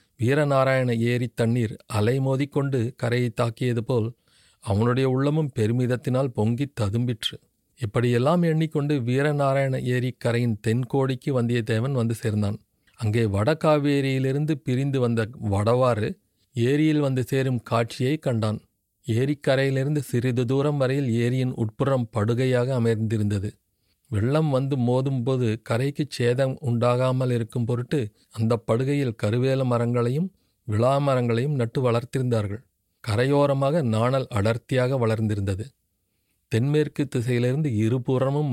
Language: Tamil